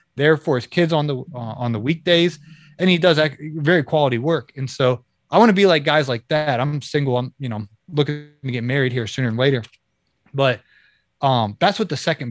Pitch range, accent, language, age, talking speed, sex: 120-150 Hz, American, English, 30-49, 220 wpm, male